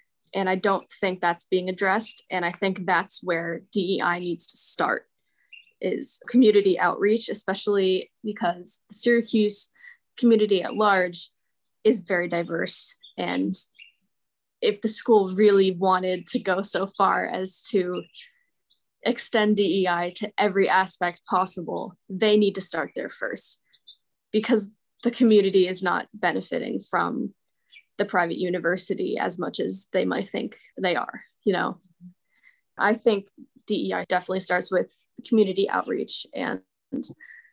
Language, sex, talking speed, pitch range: English, female, 130 wpm, 180-220 Hz